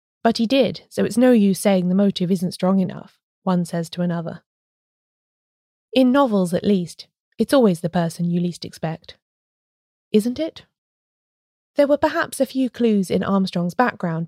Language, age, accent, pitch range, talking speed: English, 20-39, British, 175-215 Hz, 165 wpm